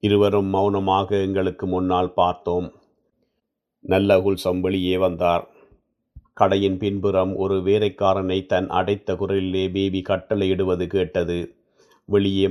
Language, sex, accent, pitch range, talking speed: Tamil, male, native, 90-100 Hz, 90 wpm